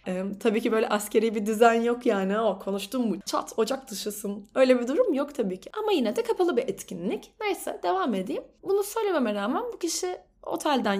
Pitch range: 205-315 Hz